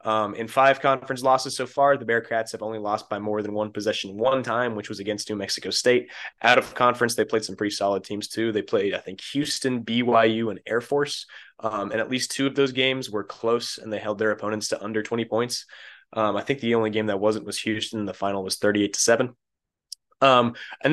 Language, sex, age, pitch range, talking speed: English, male, 20-39, 110-125 Hz, 230 wpm